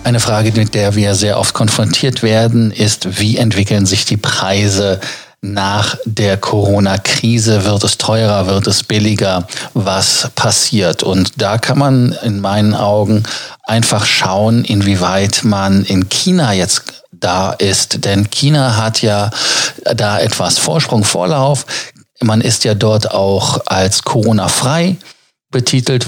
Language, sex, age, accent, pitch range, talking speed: German, male, 40-59, German, 100-120 Hz, 135 wpm